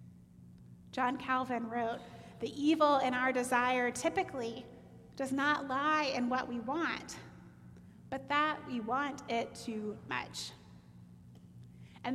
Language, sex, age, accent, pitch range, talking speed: English, female, 30-49, American, 210-275 Hz, 120 wpm